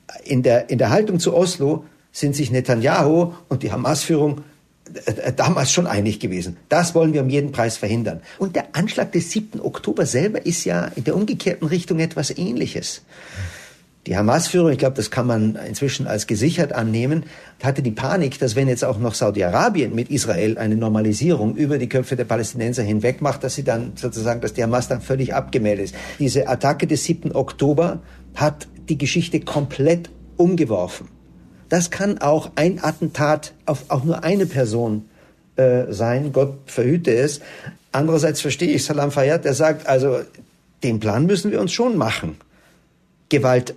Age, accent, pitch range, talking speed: 50-69, German, 120-160 Hz, 165 wpm